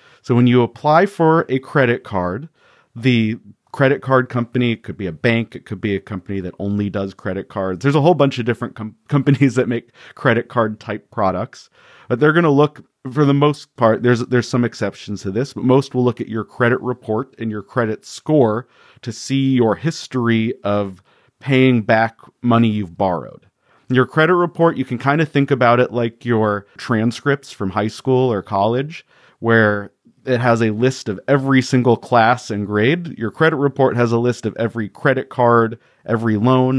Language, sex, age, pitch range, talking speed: English, male, 40-59, 105-130 Hz, 195 wpm